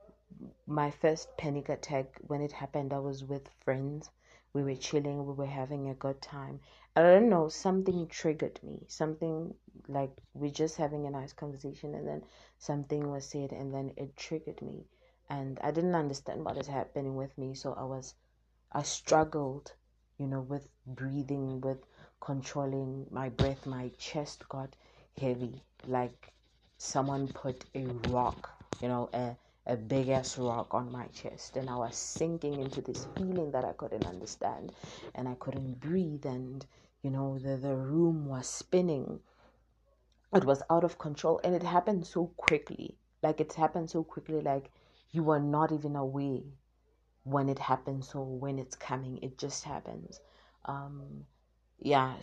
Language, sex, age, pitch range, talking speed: English, female, 30-49, 130-150 Hz, 160 wpm